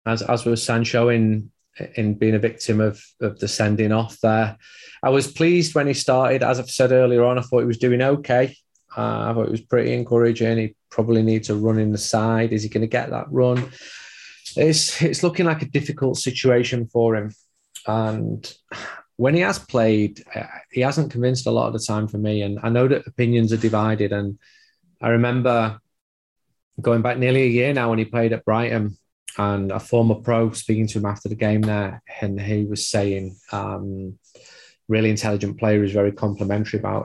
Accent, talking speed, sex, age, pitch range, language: British, 200 wpm, male, 30-49, 105-125 Hz, English